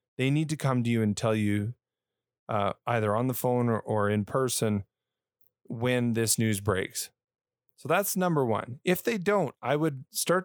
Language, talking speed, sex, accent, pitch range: English, 185 wpm, male, American, 110-140 Hz